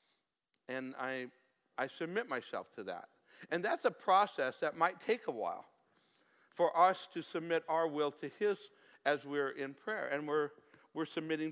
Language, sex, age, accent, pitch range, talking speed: English, male, 60-79, American, 145-205 Hz, 165 wpm